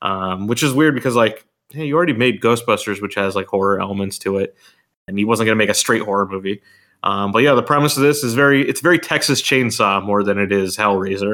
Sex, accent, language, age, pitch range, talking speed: male, American, English, 20-39, 100-115 Hz, 240 wpm